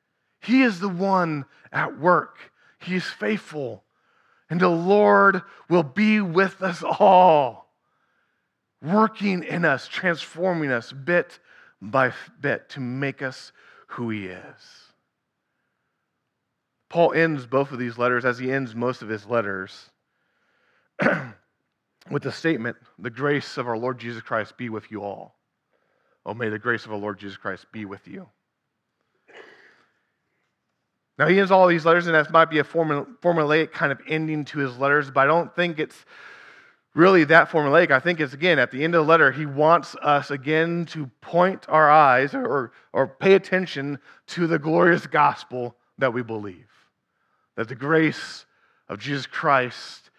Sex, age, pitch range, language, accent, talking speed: male, 30-49, 125-170 Hz, English, American, 155 wpm